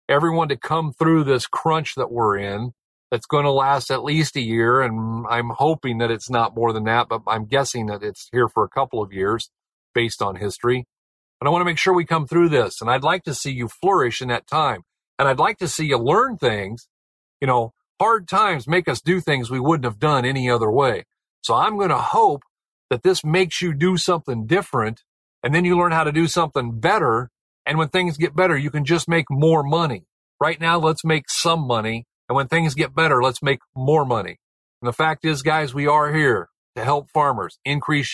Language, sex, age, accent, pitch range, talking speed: English, male, 50-69, American, 120-160 Hz, 225 wpm